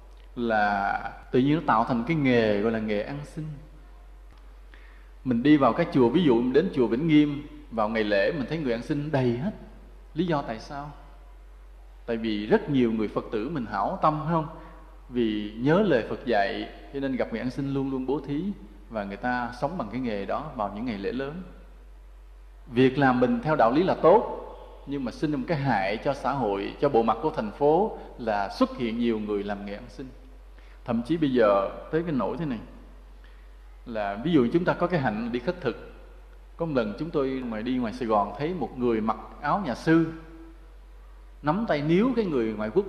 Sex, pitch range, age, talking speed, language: male, 115-165 Hz, 20-39, 215 wpm, English